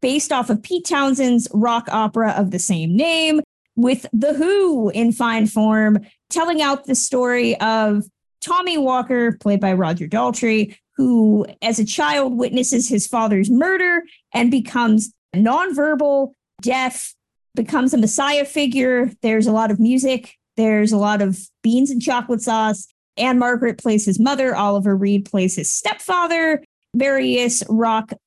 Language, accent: English, American